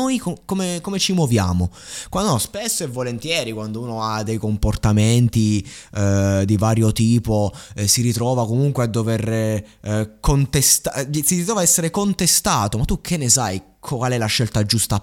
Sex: male